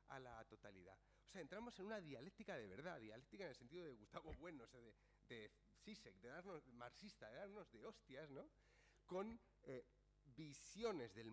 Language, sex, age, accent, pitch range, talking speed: Spanish, male, 40-59, Spanish, 130-175 Hz, 185 wpm